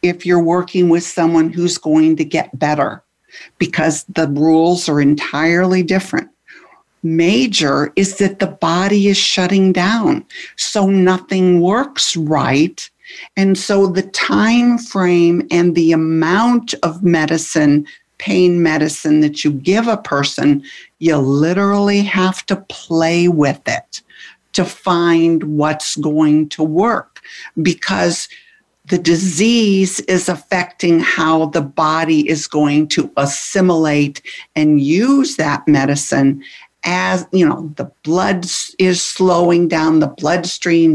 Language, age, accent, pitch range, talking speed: English, 60-79, American, 155-190 Hz, 125 wpm